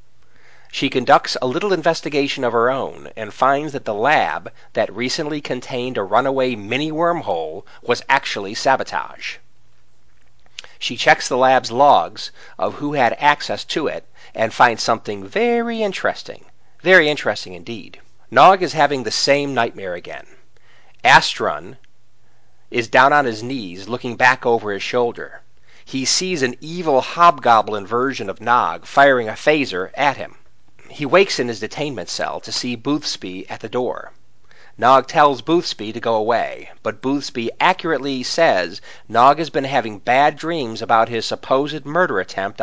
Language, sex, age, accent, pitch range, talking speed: English, male, 40-59, American, 115-150 Hz, 150 wpm